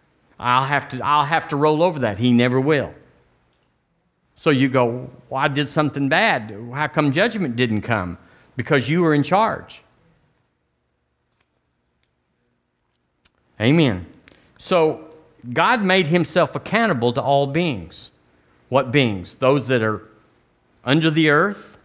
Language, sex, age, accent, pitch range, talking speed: English, male, 50-69, American, 105-150 Hz, 130 wpm